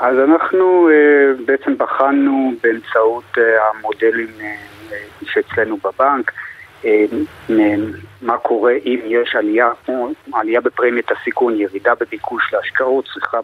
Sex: male